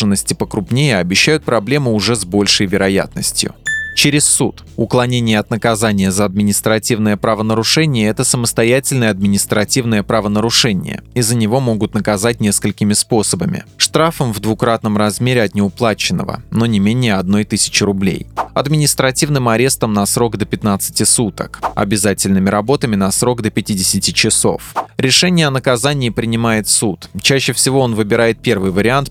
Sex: male